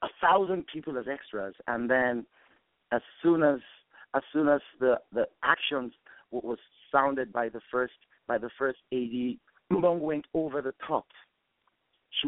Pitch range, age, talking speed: 110-150 Hz, 50-69, 150 wpm